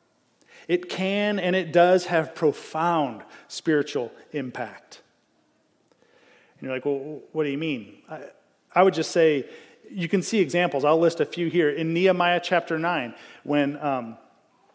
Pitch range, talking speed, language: 140-175 Hz, 150 wpm, English